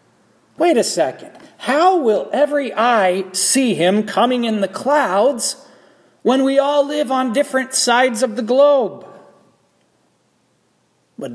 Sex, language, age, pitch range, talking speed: male, English, 40-59, 175-255 Hz, 125 wpm